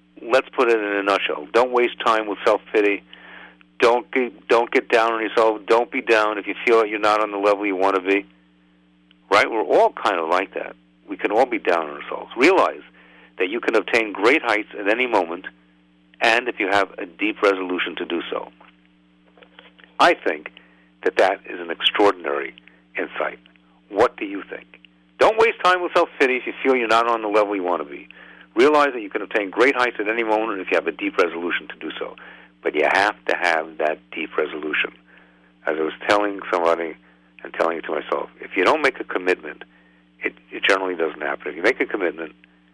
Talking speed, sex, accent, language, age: 210 wpm, male, American, English, 50-69